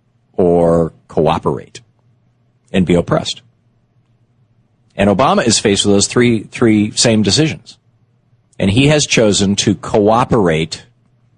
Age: 50-69